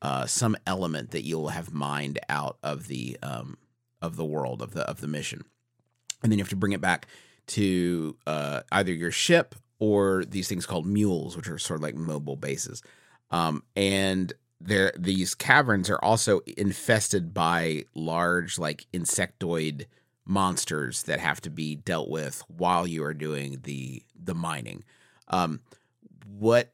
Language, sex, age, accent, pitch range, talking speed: English, male, 40-59, American, 80-105 Hz, 160 wpm